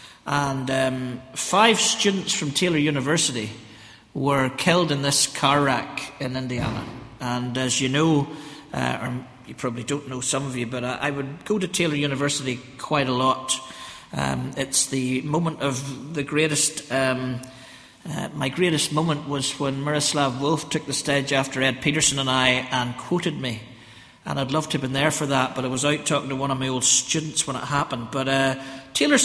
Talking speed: 190 wpm